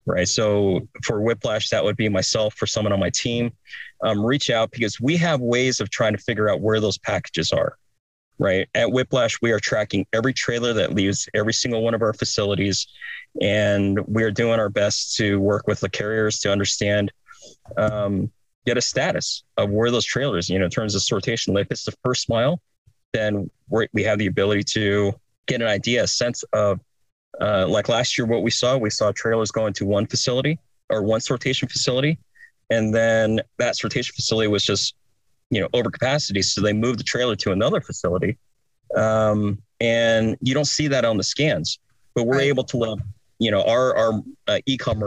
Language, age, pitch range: English, 30-49, 105-125 Hz